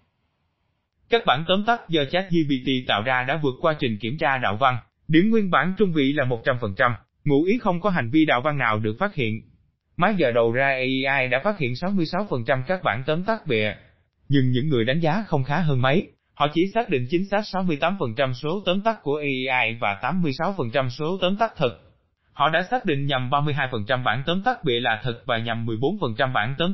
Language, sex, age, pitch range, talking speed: Vietnamese, male, 20-39, 120-175 Hz, 210 wpm